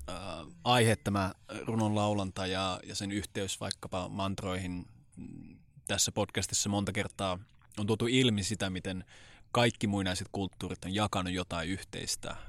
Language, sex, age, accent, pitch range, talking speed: Finnish, male, 20-39, native, 95-110 Hz, 120 wpm